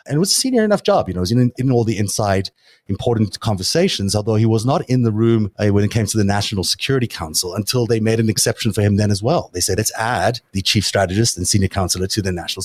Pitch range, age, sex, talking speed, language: 95-120 Hz, 30-49, male, 265 wpm, English